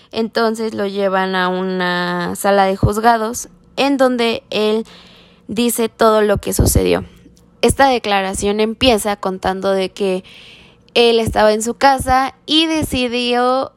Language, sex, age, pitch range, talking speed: Spanish, female, 10-29, 190-235 Hz, 125 wpm